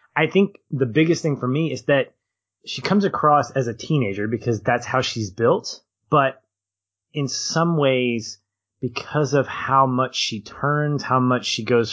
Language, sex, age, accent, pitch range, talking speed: English, male, 20-39, American, 105-135 Hz, 170 wpm